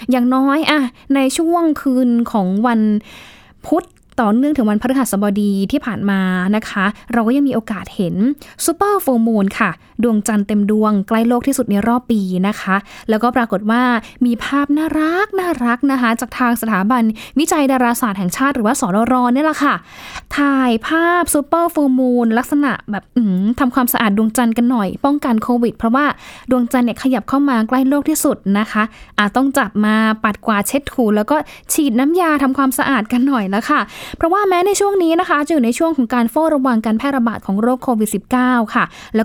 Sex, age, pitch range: female, 10-29, 215-275 Hz